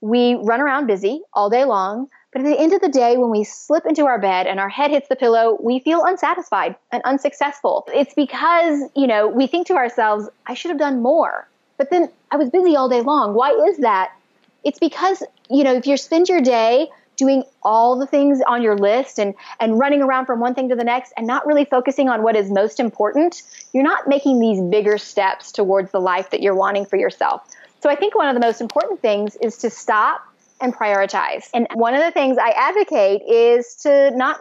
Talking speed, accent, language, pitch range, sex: 225 wpm, American, English, 220-285 Hz, female